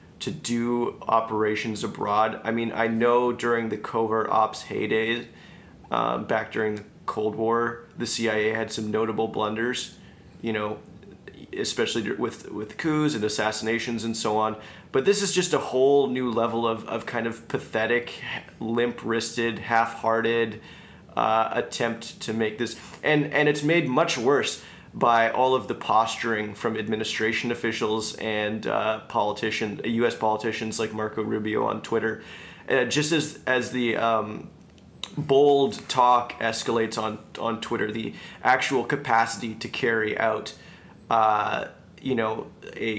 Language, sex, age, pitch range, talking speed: English, male, 30-49, 110-120 Hz, 145 wpm